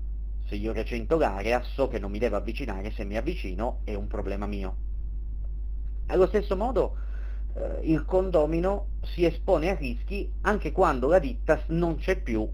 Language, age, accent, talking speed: Italian, 30-49, native, 165 wpm